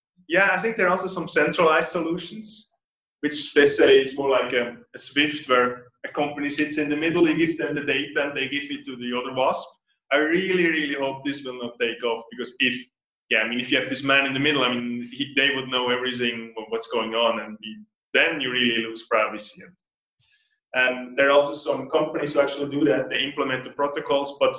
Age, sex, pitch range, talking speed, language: 20-39, male, 120-150 Hz, 225 wpm, English